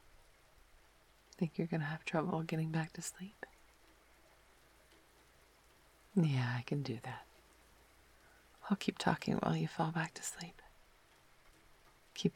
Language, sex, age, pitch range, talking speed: English, female, 30-49, 150-180 Hz, 120 wpm